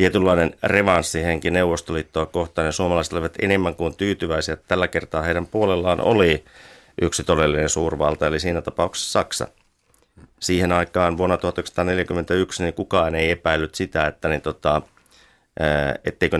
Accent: native